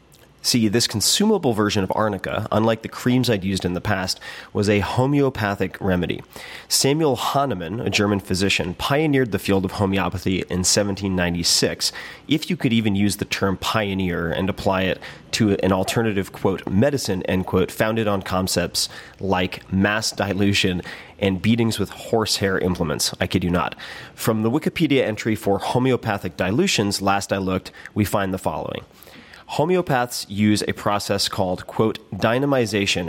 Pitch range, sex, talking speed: 95-120 Hz, male, 150 wpm